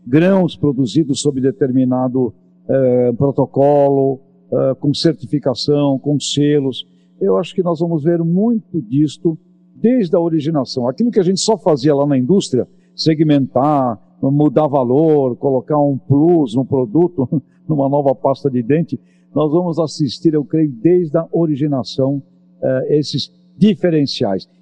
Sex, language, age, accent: male, Portuguese, 60-79, Brazilian